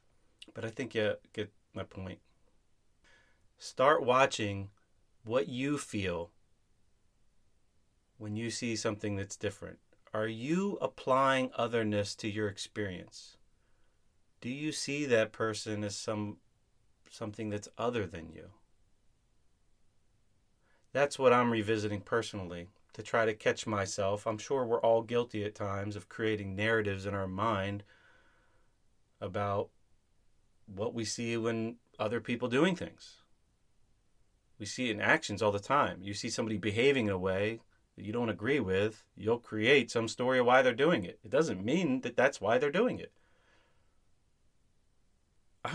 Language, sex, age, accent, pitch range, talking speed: English, male, 30-49, American, 95-115 Hz, 140 wpm